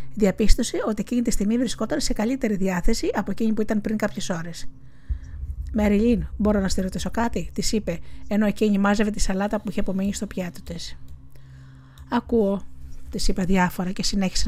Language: Greek